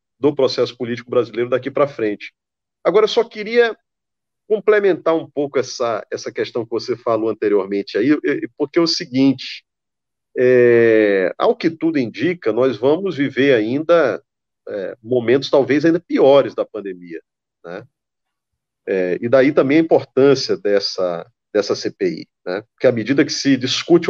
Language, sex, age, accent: Portuguese, male, 40-59, Brazilian